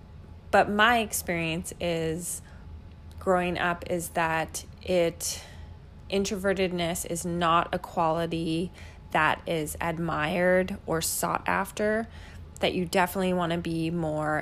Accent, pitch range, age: American, 155-190 Hz, 20-39